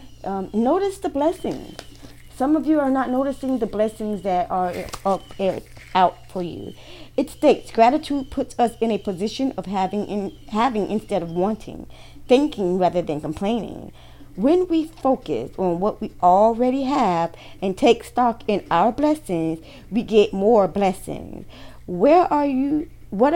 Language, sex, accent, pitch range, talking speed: English, female, American, 180-240 Hz, 150 wpm